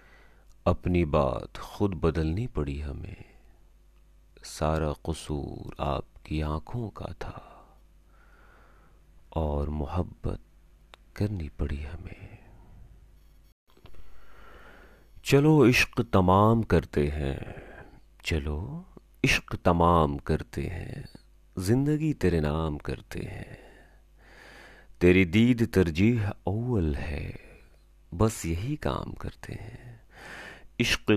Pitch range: 80-105 Hz